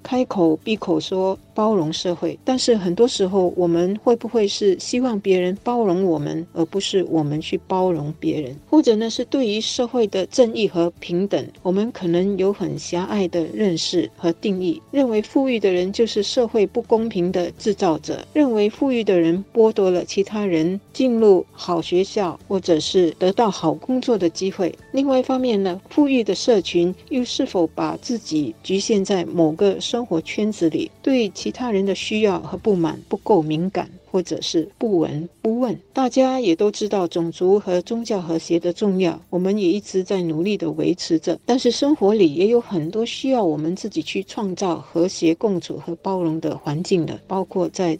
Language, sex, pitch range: Chinese, female, 170-225 Hz